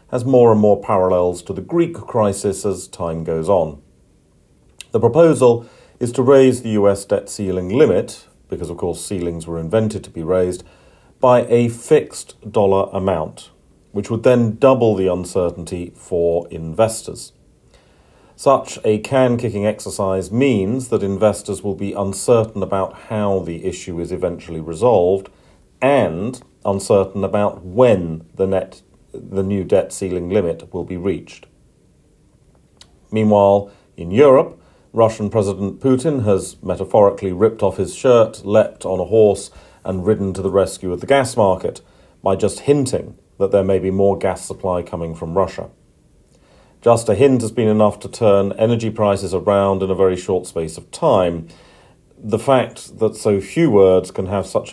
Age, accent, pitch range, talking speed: 40-59, British, 95-110 Hz, 155 wpm